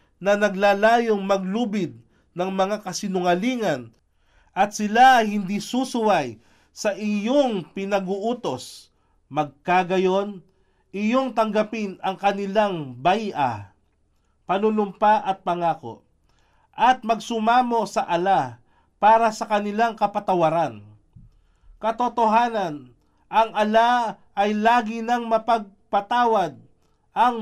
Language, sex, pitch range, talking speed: Filipino, male, 170-225 Hz, 85 wpm